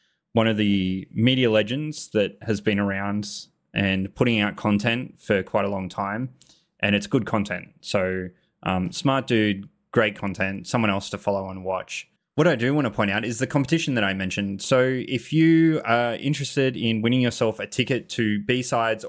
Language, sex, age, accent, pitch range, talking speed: English, male, 20-39, Australian, 105-135 Hz, 185 wpm